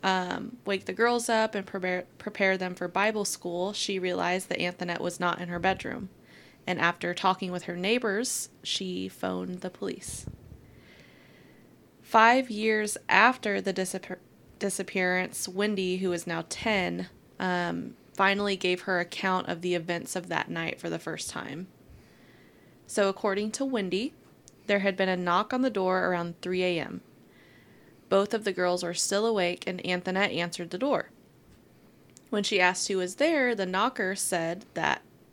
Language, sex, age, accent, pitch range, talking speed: English, female, 20-39, American, 180-210 Hz, 160 wpm